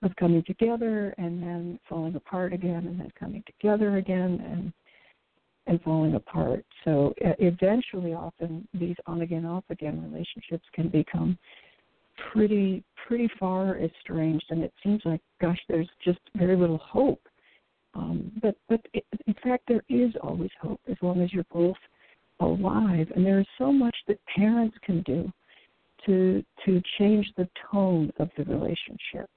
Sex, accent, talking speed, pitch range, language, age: female, American, 155 wpm, 175-220 Hz, English, 60-79